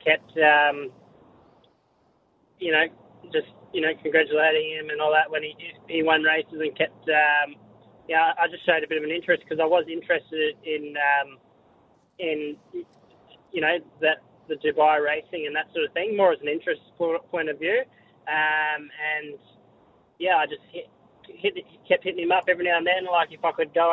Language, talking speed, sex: English, 185 wpm, male